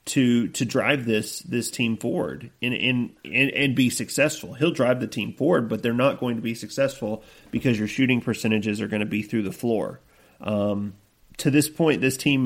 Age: 30-49